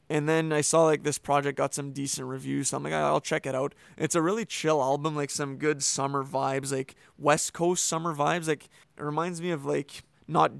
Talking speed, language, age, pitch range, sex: 225 wpm, English, 20-39, 135-150 Hz, male